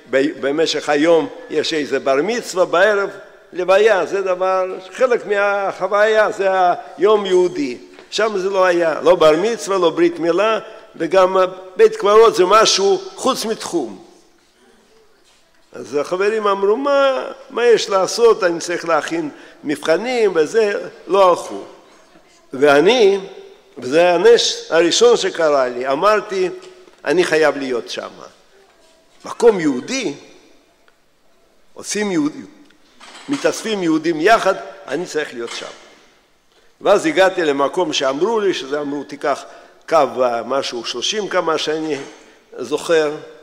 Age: 50-69